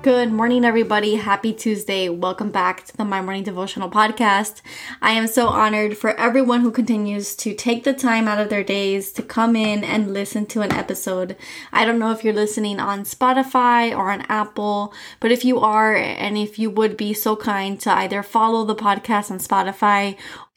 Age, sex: 20-39, female